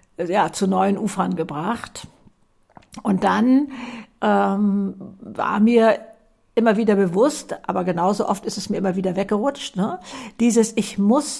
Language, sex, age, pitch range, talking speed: German, female, 60-79, 190-235 Hz, 135 wpm